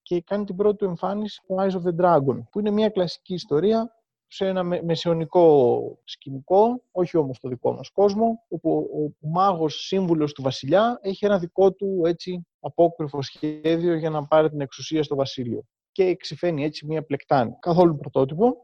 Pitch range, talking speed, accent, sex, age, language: 150-190 Hz, 165 wpm, native, male, 30-49, Greek